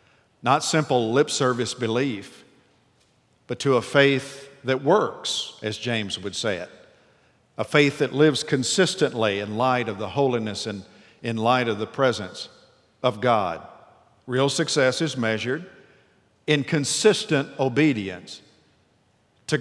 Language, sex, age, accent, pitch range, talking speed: English, male, 50-69, American, 115-150 Hz, 130 wpm